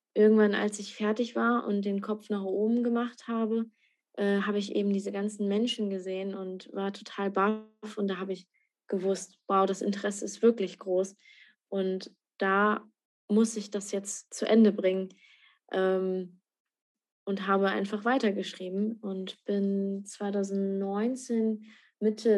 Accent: German